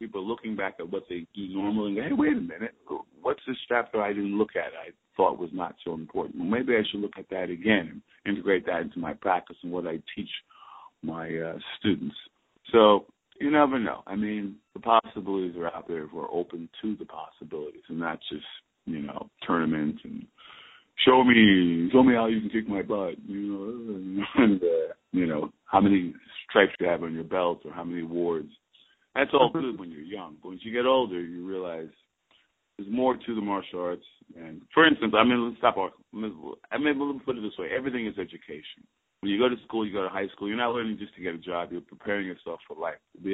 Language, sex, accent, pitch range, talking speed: English, male, American, 90-115 Hz, 225 wpm